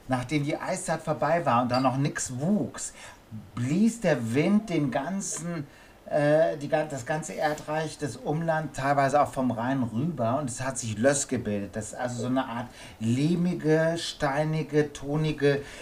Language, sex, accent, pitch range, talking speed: German, male, German, 120-150 Hz, 160 wpm